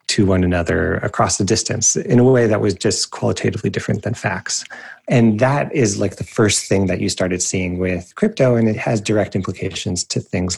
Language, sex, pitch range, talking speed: English, male, 95-120 Hz, 205 wpm